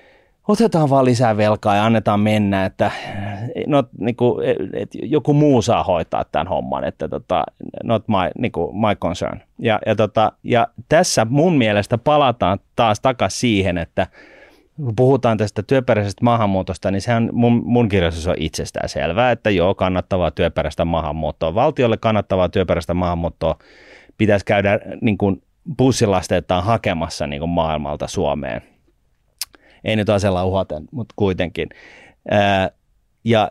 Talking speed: 135 wpm